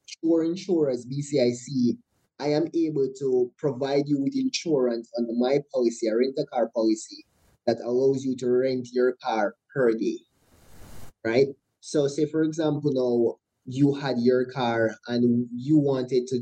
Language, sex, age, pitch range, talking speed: English, male, 20-39, 120-145 Hz, 145 wpm